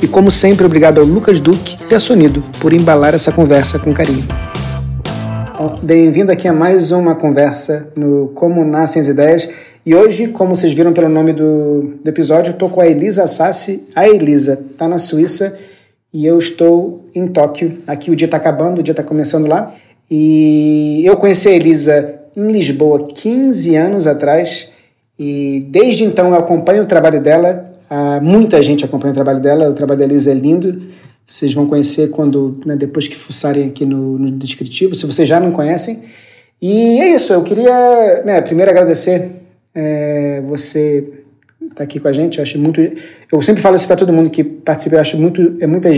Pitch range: 145-175 Hz